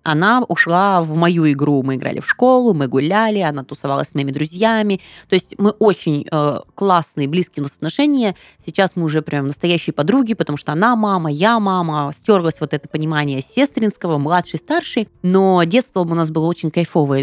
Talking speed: 180 wpm